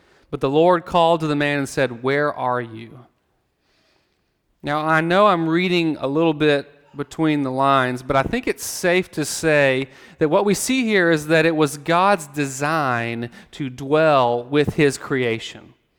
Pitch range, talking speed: 130-165 Hz, 175 wpm